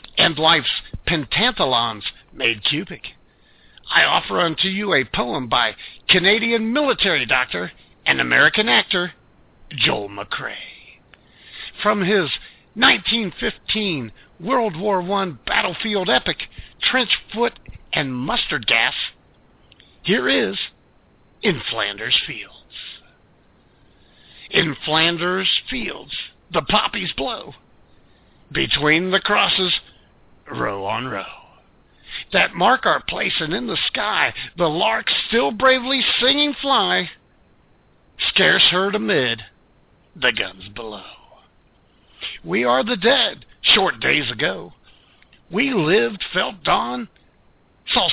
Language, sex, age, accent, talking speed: English, male, 50-69, American, 100 wpm